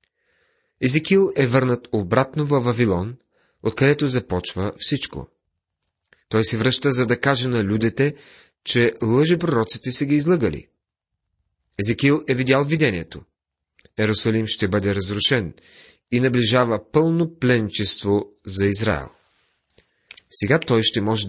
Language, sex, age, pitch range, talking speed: Bulgarian, male, 30-49, 105-135 Hz, 115 wpm